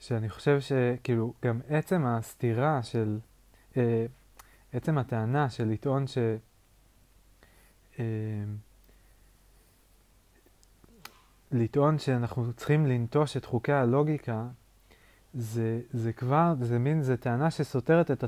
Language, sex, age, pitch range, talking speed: Hebrew, male, 30-49, 115-145 Hz, 100 wpm